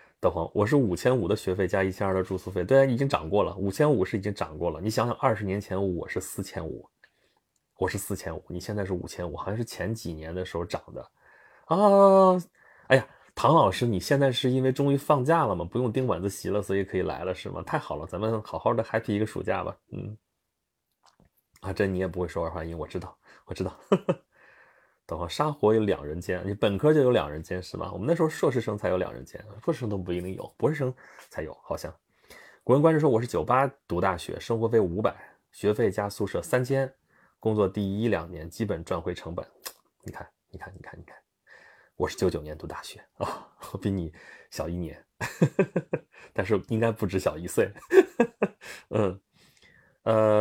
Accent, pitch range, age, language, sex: native, 90-125 Hz, 20-39, Chinese, male